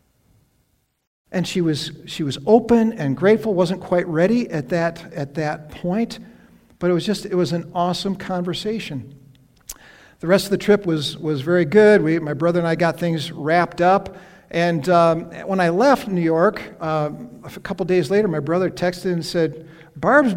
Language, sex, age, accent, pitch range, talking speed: English, male, 50-69, American, 150-195 Hz, 180 wpm